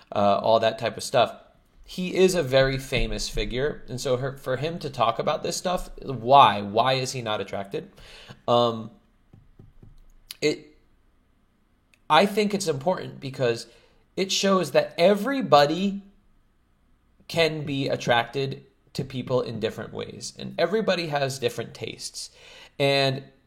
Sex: male